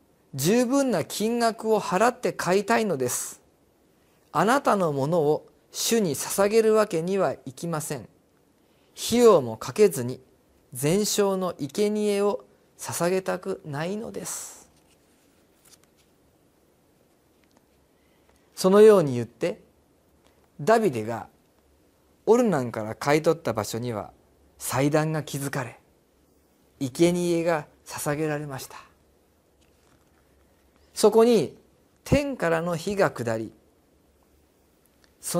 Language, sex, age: Japanese, male, 40-59